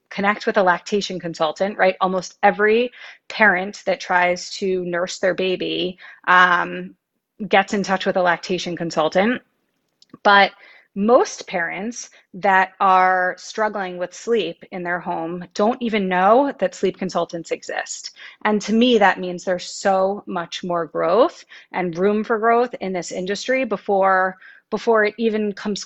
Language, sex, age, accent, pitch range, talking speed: English, female, 30-49, American, 180-210 Hz, 145 wpm